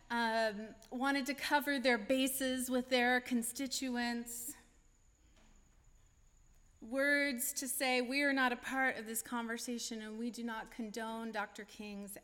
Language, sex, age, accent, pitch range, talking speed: English, female, 30-49, American, 200-245 Hz, 130 wpm